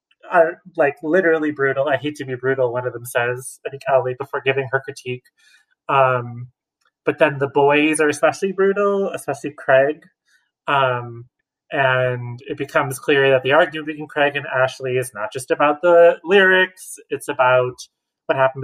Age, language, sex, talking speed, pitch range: 30-49, English, male, 165 wpm, 130-160 Hz